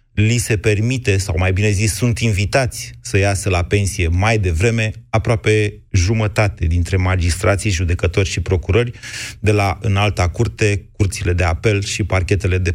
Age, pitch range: 30-49, 100-120 Hz